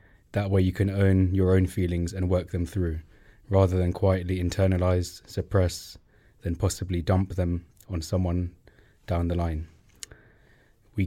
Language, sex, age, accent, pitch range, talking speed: English, male, 20-39, British, 90-100 Hz, 145 wpm